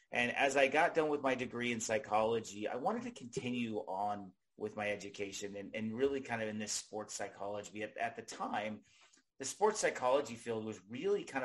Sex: male